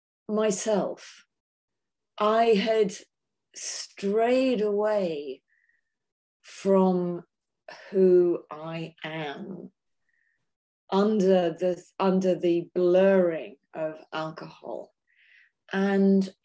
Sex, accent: female, British